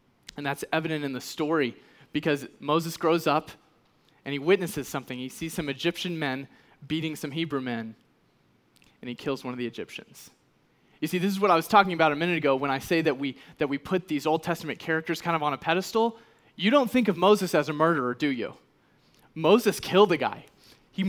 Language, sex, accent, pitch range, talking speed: English, male, American, 140-175 Hz, 210 wpm